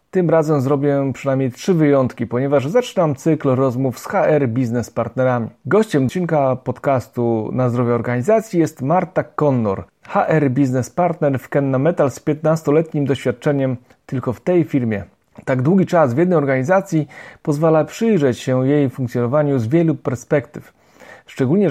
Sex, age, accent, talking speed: male, 30-49, native, 140 wpm